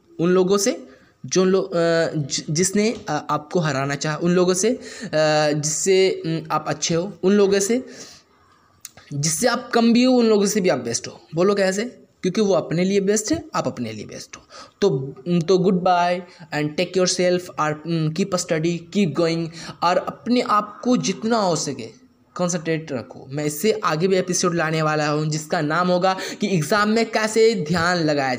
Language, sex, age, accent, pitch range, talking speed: Hindi, male, 20-39, native, 165-215 Hz, 175 wpm